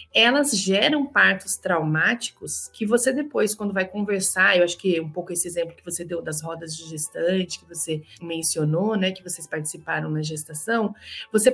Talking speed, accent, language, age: 175 wpm, Brazilian, Portuguese, 30-49